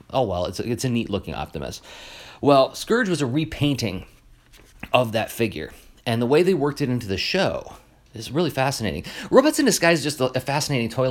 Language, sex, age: English, male, 30-49